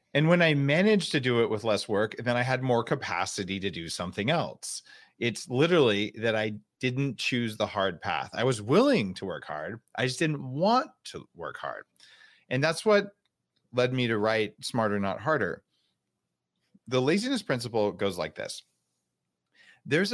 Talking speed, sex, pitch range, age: 175 wpm, male, 105-150 Hz, 40-59